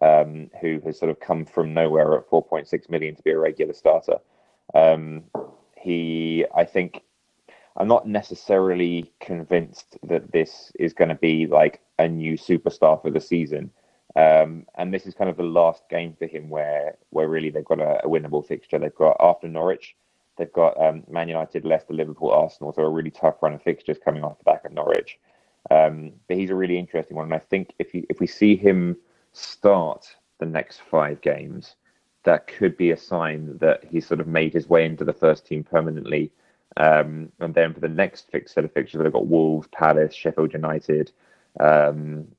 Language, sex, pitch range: English, male, 80-85 Hz